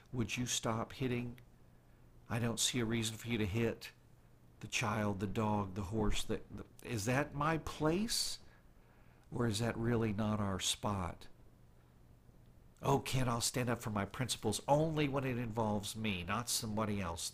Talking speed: 165 wpm